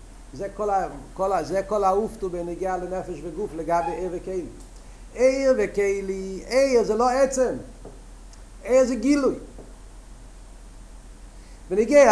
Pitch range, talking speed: 195-245 Hz, 100 wpm